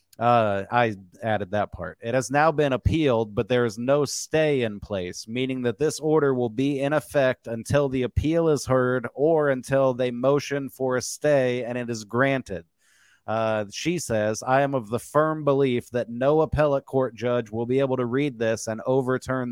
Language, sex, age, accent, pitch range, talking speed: English, male, 30-49, American, 115-140 Hz, 195 wpm